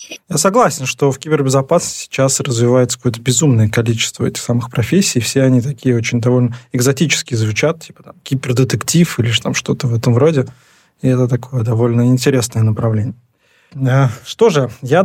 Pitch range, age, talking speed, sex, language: 125-165 Hz, 20-39, 155 wpm, male, Russian